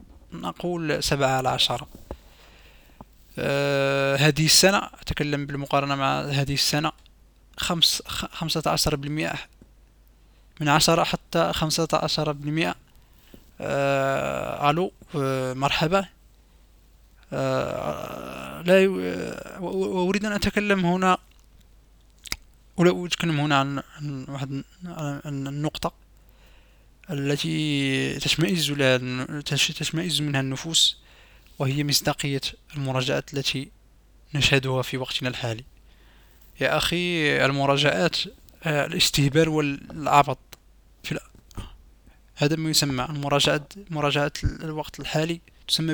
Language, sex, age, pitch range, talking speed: Arabic, male, 20-39, 130-155 Hz, 90 wpm